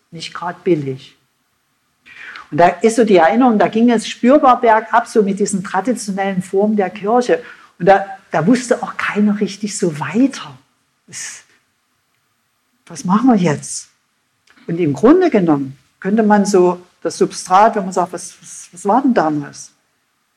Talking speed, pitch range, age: 150 wpm, 170-225 Hz, 50-69